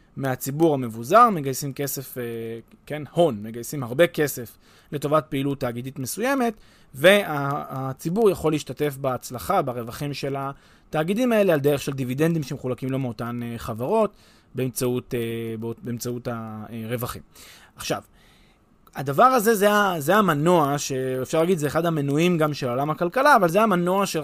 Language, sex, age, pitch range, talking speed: Hebrew, male, 20-39, 130-200 Hz, 125 wpm